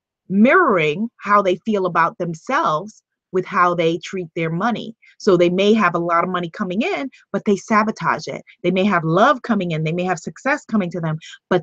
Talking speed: 205 wpm